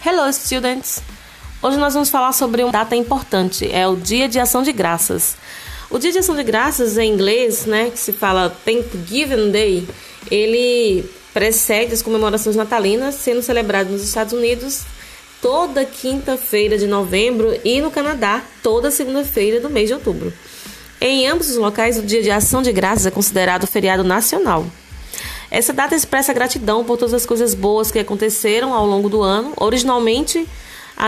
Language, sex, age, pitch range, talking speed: Portuguese, female, 20-39, 210-265 Hz, 165 wpm